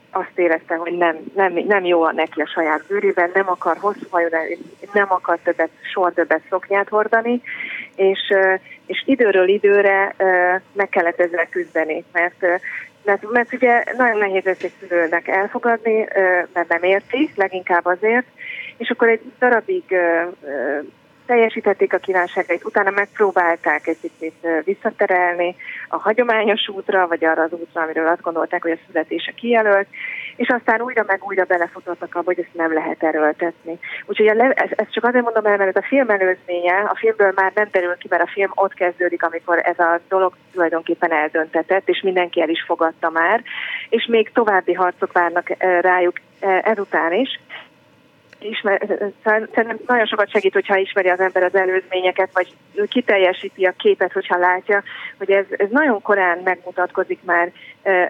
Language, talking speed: Hungarian, 155 wpm